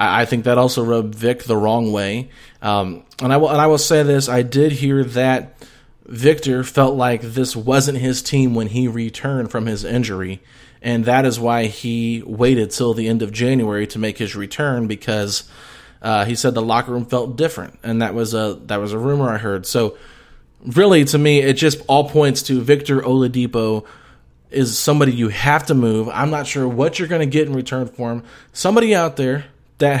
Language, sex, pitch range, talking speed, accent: English, male, 120-145 Hz, 205 wpm, American